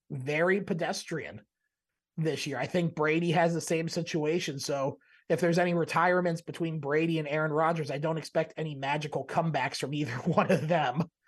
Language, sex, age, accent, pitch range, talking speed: English, male, 30-49, American, 150-175 Hz, 170 wpm